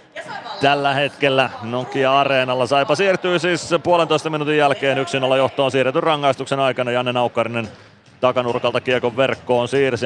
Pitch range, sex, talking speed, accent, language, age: 120-140 Hz, male, 115 wpm, native, Finnish, 30-49